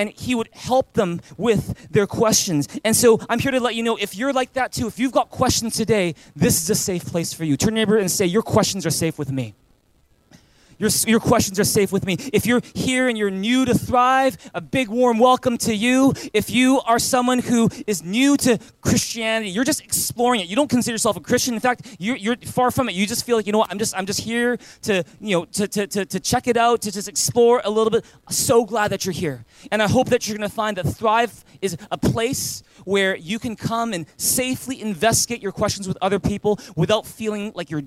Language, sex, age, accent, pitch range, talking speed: English, male, 20-39, American, 185-235 Hz, 240 wpm